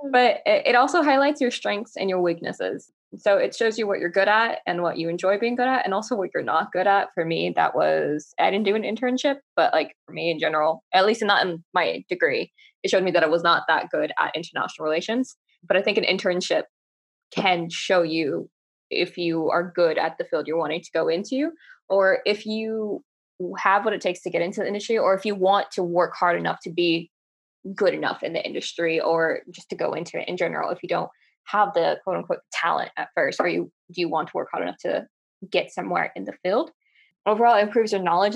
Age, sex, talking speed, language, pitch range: 10-29, female, 230 wpm, English, 175-230 Hz